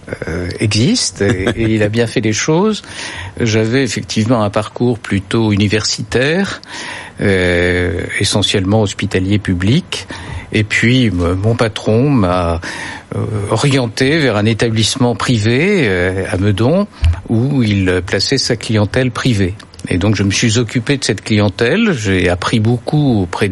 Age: 60-79